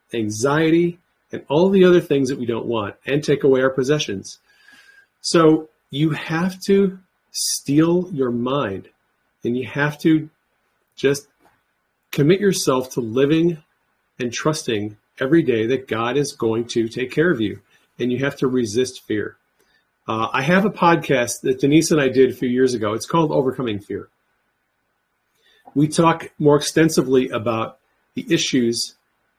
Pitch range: 120-155 Hz